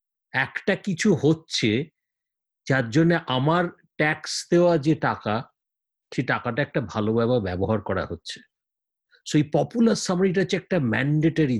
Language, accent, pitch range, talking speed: English, Indian, 115-170 Hz, 125 wpm